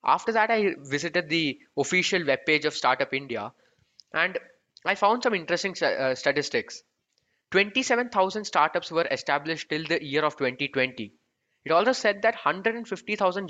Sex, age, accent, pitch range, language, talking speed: male, 20-39, Indian, 140-195 Hz, English, 140 wpm